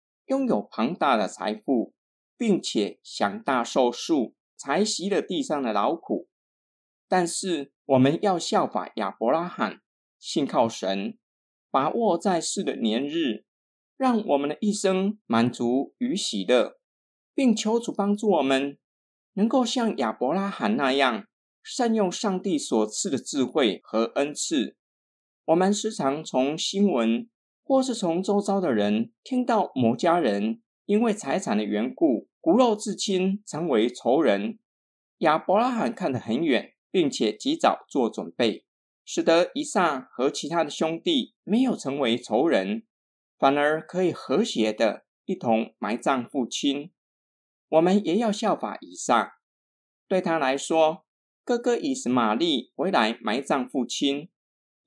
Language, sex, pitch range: Chinese, male, 140-220 Hz